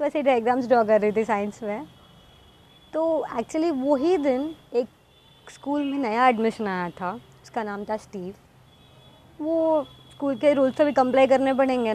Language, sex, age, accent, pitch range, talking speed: Hindi, male, 20-39, native, 220-290 Hz, 160 wpm